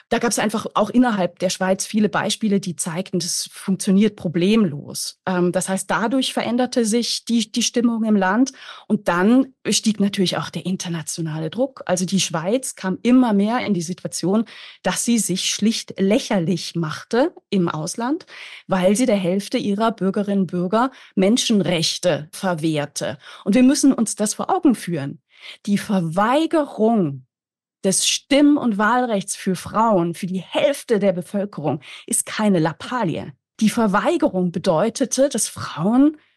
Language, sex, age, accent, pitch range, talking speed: German, female, 30-49, German, 185-245 Hz, 145 wpm